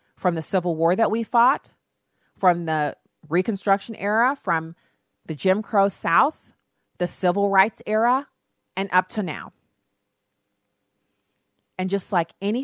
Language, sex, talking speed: English, female, 135 wpm